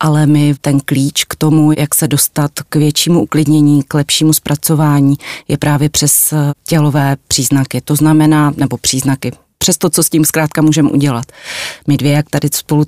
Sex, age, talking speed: female, 30-49, 170 wpm